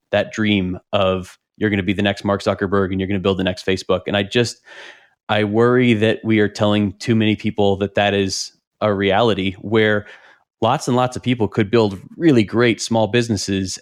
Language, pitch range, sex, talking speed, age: English, 100-115 Hz, male, 210 wpm, 20-39